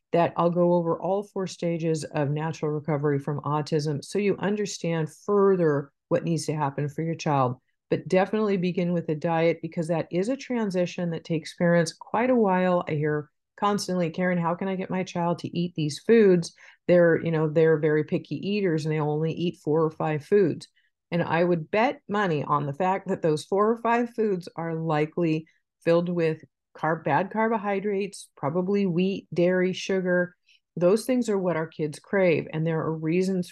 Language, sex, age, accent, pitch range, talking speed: English, female, 40-59, American, 155-190 Hz, 190 wpm